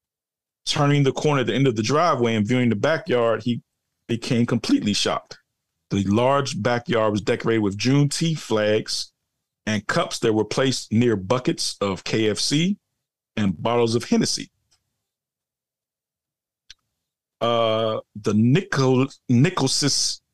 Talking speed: 125 wpm